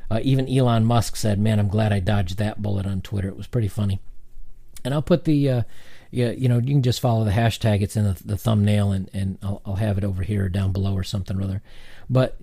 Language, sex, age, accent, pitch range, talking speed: English, male, 40-59, American, 100-125 Hz, 250 wpm